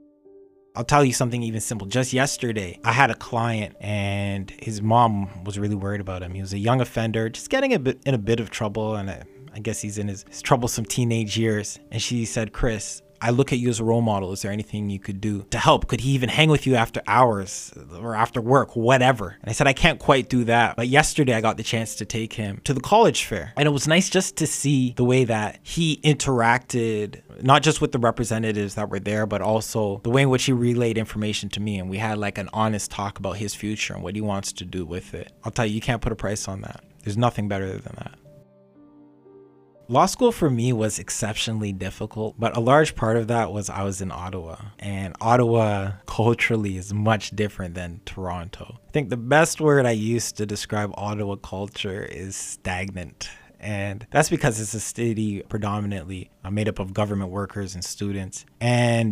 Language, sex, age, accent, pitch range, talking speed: English, male, 20-39, American, 100-125 Hz, 215 wpm